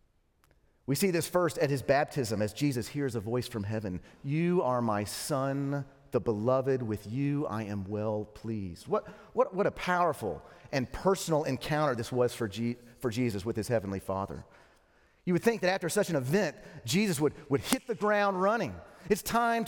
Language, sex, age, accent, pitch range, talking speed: English, male, 40-59, American, 115-185 Hz, 185 wpm